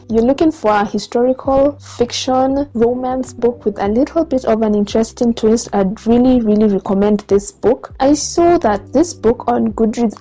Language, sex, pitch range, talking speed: English, female, 210-245 Hz, 170 wpm